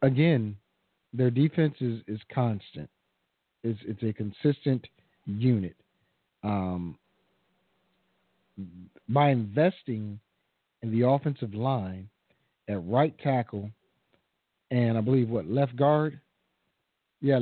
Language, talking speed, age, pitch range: English, 95 wpm, 50-69, 115-150 Hz